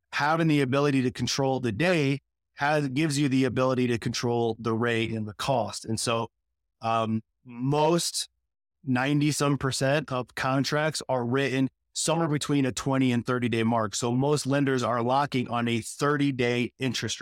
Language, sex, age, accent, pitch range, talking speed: English, male, 30-49, American, 125-145 Hz, 165 wpm